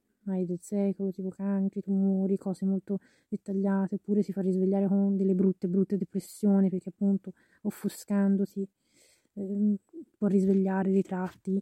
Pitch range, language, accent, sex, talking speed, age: 185-205 Hz, Italian, native, female, 130 wpm, 20-39